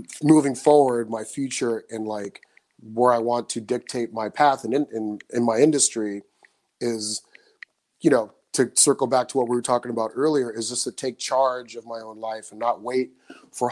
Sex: male